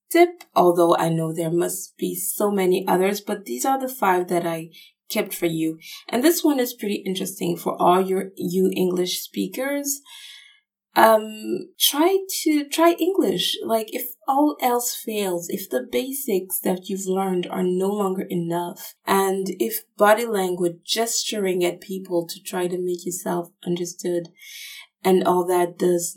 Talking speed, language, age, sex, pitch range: 160 wpm, English, 20-39, female, 175-255 Hz